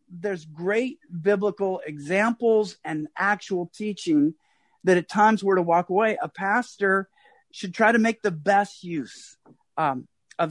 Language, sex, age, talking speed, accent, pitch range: English, male, 50-69, 145 wpm, American, 175-225 Hz